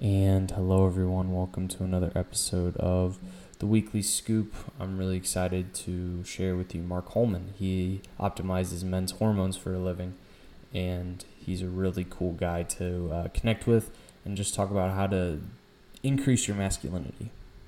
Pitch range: 90-95 Hz